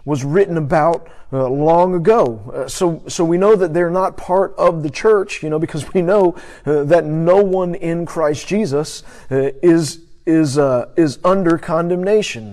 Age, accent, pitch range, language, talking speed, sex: 50-69, American, 145-180 Hz, English, 175 wpm, male